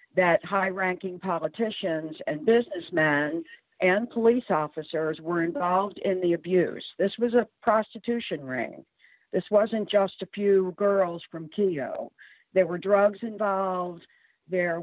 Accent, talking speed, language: American, 130 wpm, English